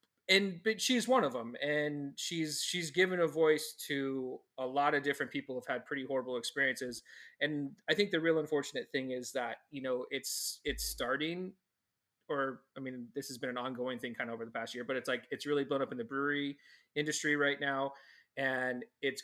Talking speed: 210 wpm